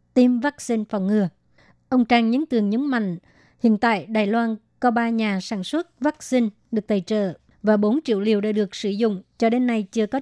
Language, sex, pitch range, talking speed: Vietnamese, male, 210-235 Hz, 210 wpm